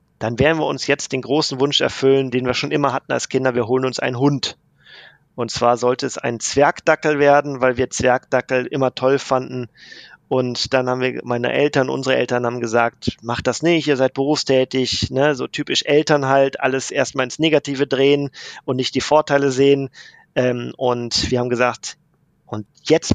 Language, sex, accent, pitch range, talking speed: German, male, German, 120-140 Hz, 180 wpm